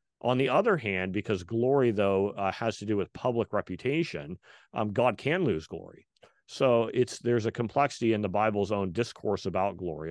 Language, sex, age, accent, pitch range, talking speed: English, male, 40-59, American, 95-115 Hz, 185 wpm